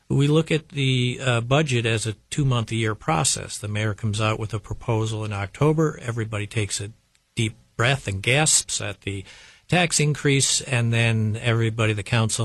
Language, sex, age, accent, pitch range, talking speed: English, male, 50-69, American, 110-130 Hz, 170 wpm